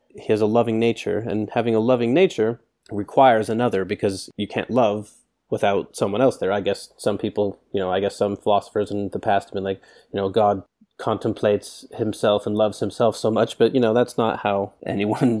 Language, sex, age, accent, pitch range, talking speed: English, male, 30-49, American, 105-125 Hz, 205 wpm